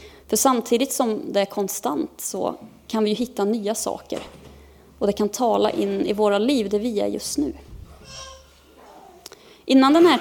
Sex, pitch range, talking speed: female, 200-260 Hz, 170 wpm